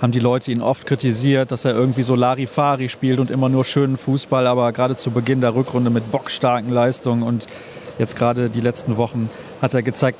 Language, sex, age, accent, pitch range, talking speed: German, male, 40-59, German, 120-135 Hz, 205 wpm